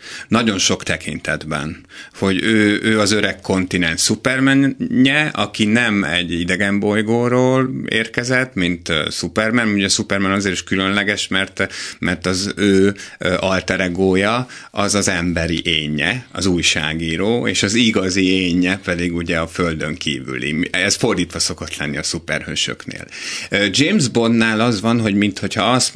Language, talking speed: Hungarian, 130 wpm